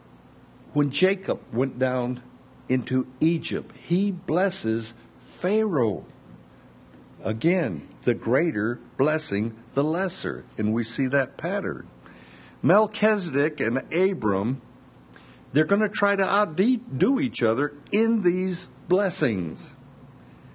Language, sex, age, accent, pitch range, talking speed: English, male, 60-79, American, 110-155 Hz, 100 wpm